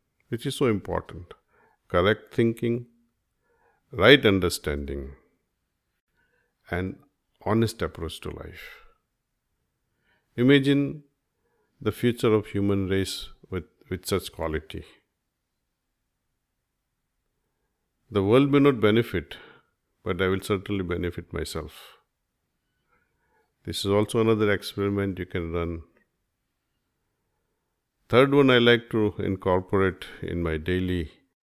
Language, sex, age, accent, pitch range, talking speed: Hindi, male, 50-69, native, 85-110 Hz, 95 wpm